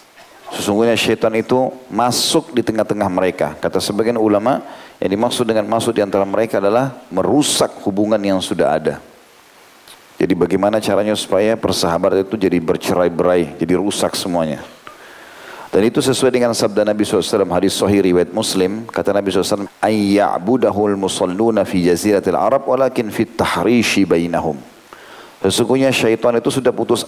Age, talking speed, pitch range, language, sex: 40-59, 135 wpm, 100-115 Hz, Indonesian, male